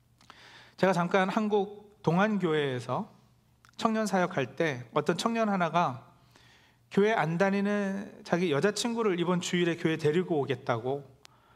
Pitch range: 140-195 Hz